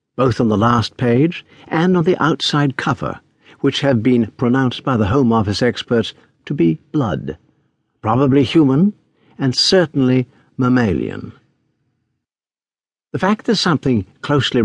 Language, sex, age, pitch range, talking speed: English, male, 60-79, 110-145 Hz, 130 wpm